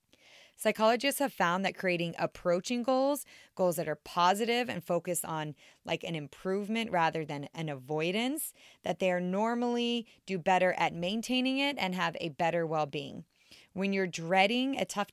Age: 20-39